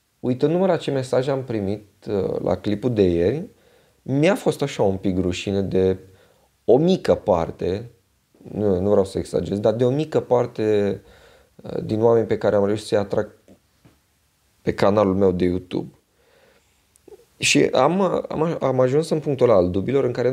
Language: Romanian